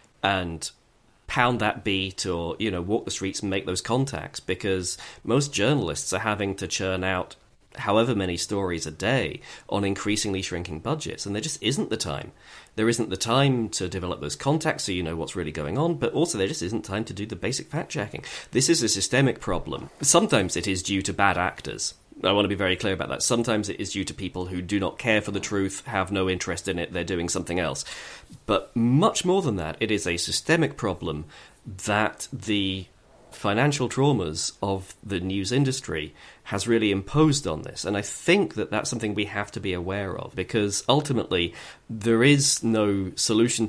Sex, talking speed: male, 200 wpm